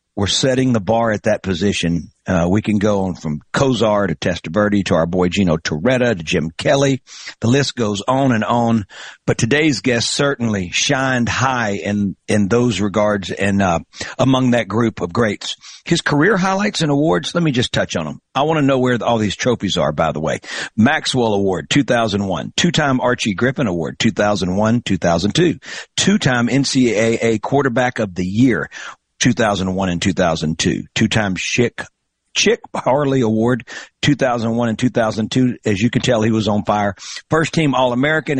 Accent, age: American, 50-69